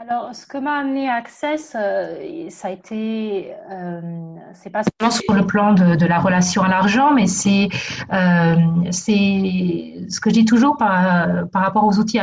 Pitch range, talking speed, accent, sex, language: 185-235 Hz, 175 wpm, French, female, French